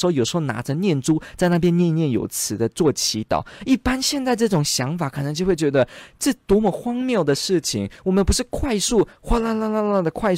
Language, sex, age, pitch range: Chinese, male, 20-39, 130-205 Hz